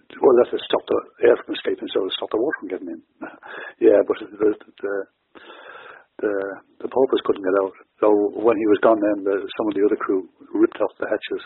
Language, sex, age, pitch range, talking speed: English, male, 60-79, 315-415 Hz, 220 wpm